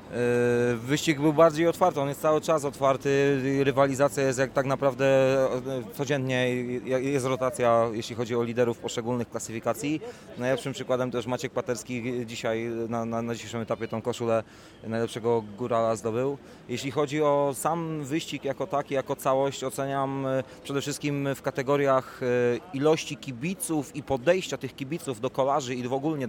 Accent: native